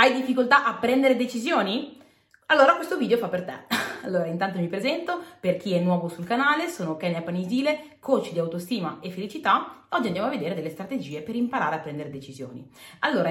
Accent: native